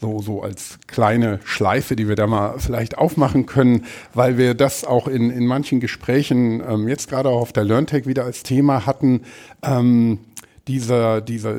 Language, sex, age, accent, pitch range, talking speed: English, male, 50-69, German, 115-145 Hz, 175 wpm